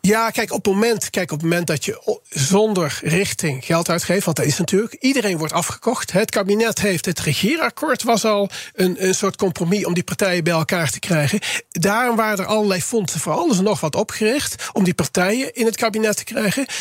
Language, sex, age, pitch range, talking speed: Dutch, male, 40-59, 175-225 Hz, 210 wpm